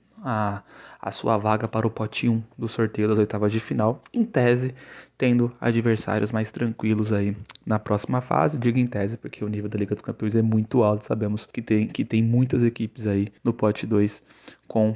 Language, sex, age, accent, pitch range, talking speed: Portuguese, male, 20-39, Brazilian, 105-125 Hz, 200 wpm